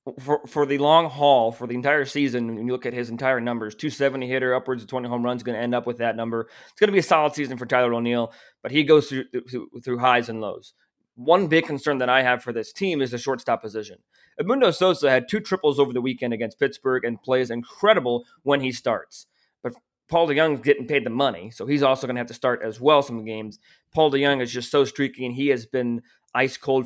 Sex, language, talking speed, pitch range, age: male, English, 245 wpm, 120-145 Hz, 20-39